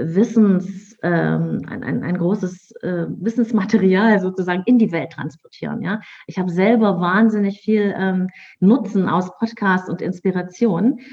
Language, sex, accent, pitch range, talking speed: German, female, German, 180-230 Hz, 135 wpm